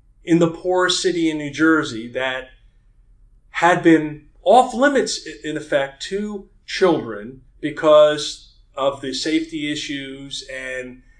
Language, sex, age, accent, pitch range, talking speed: English, male, 40-59, American, 120-165 Hz, 120 wpm